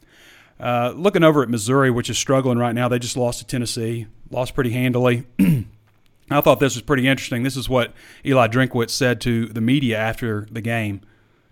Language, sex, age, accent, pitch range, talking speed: English, male, 30-49, American, 110-135 Hz, 190 wpm